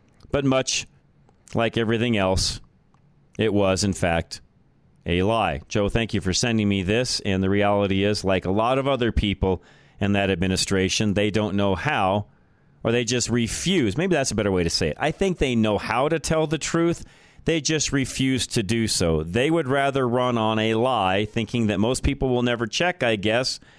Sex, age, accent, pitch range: male, 40-59, American, 105-130 Hz